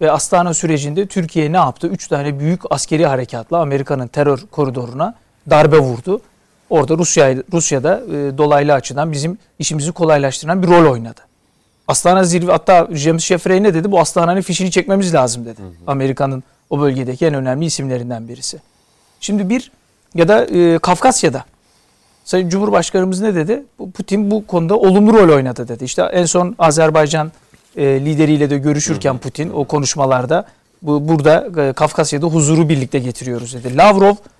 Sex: male